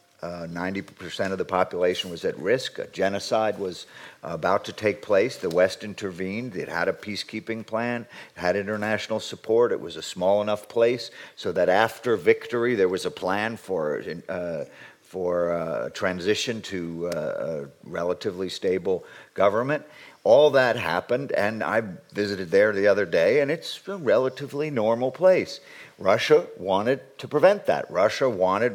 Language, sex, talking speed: English, male, 155 wpm